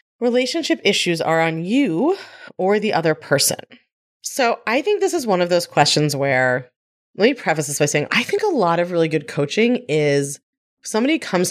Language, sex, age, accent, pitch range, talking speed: English, female, 30-49, American, 150-225 Hz, 190 wpm